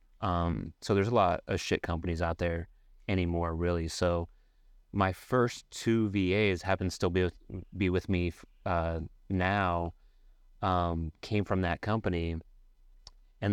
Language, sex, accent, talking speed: English, male, American, 145 wpm